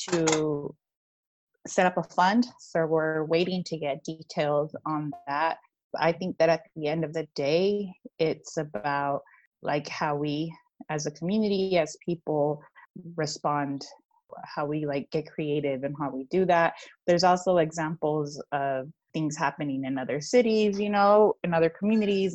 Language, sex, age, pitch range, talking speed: English, female, 20-39, 145-180 Hz, 155 wpm